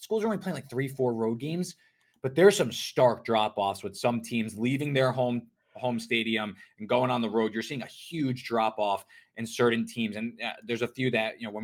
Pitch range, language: 115-145 Hz, English